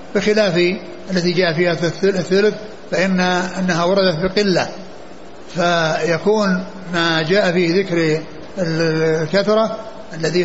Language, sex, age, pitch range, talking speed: Arabic, male, 60-79, 175-195 Hz, 105 wpm